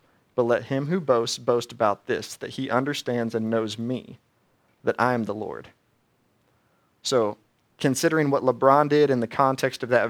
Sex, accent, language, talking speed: male, American, English, 170 wpm